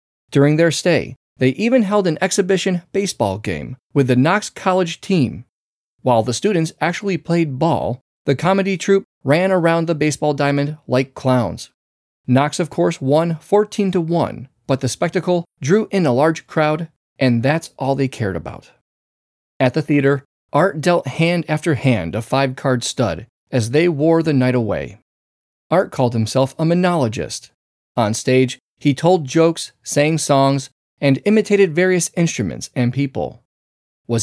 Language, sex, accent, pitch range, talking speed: English, male, American, 125-170 Hz, 155 wpm